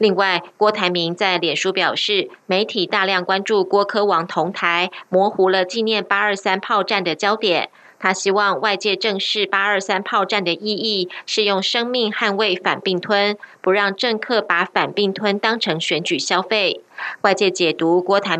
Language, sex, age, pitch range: German, female, 20-39, 175-210 Hz